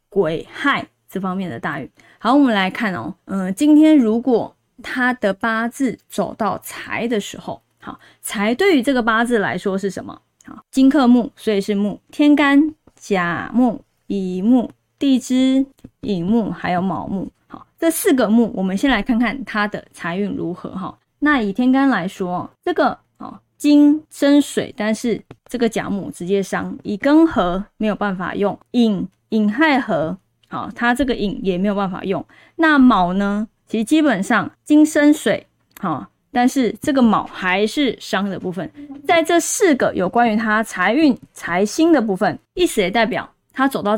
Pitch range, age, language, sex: 200-280 Hz, 20-39, Chinese, female